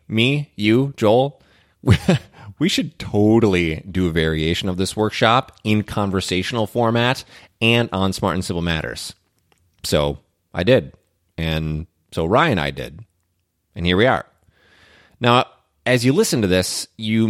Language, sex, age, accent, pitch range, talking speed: English, male, 30-49, American, 90-120 Hz, 140 wpm